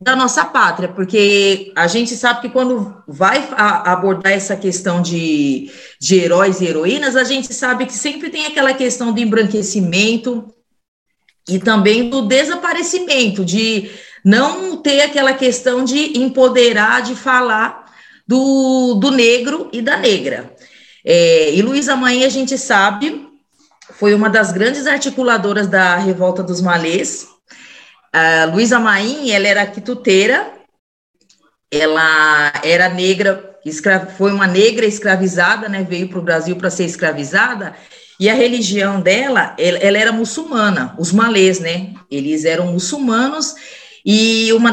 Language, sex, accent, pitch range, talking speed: Portuguese, female, Brazilian, 190-255 Hz, 130 wpm